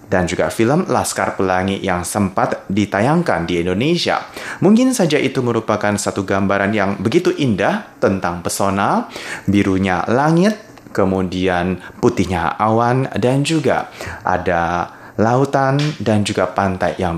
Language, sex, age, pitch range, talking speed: Indonesian, male, 30-49, 95-130 Hz, 120 wpm